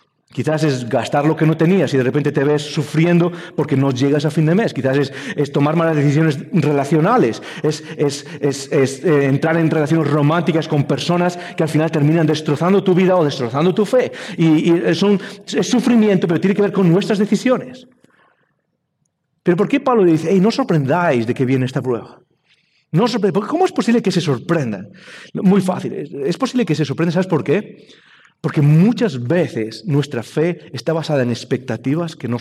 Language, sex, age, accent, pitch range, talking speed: English, male, 40-59, Spanish, 135-180 Hz, 190 wpm